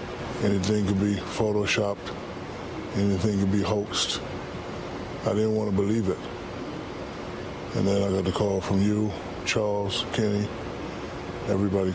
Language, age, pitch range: English, 20-39, 95-105 Hz